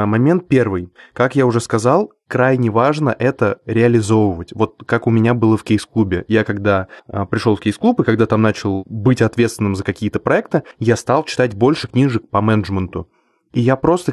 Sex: male